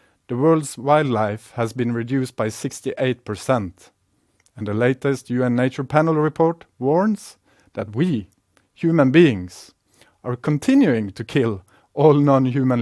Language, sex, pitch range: Korean, male, 105-150 Hz